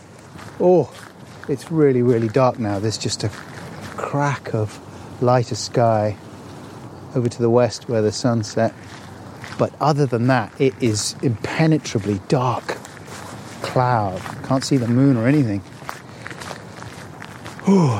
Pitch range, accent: 120-180 Hz, British